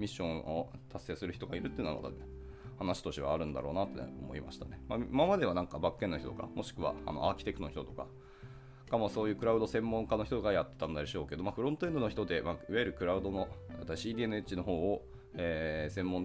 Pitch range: 85-125 Hz